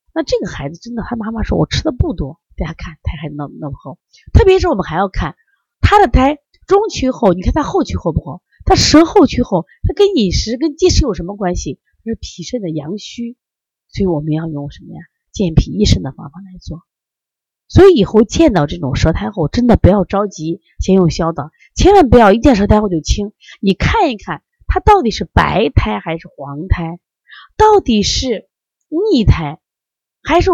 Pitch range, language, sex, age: 160-250 Hz, Chinese, female, 30-49